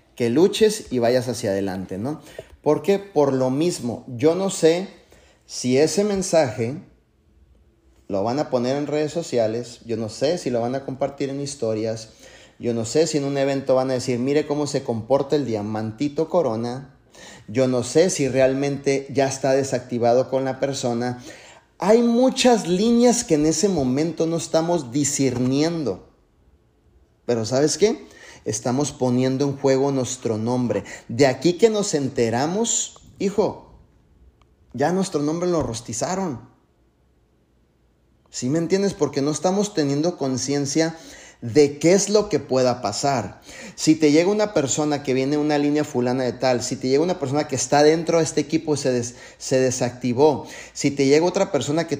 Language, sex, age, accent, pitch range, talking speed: Spanish, male, 30-49, Mexican, 125-160 Hz, 160 wpm